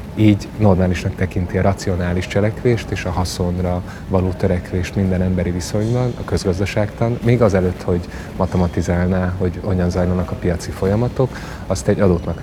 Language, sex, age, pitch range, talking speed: Hungarian, male, 30-49, 90-100 Hz, 145 wpm